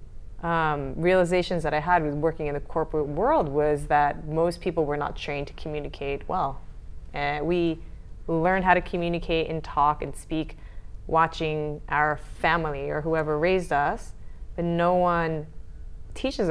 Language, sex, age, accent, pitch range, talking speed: English, female, 20-39, American, 140-170 Hz, 150 wpm